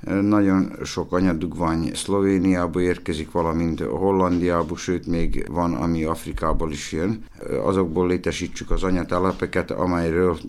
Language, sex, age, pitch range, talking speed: Hungarian, male, 60-79, 80-95 Hz, 110 wpm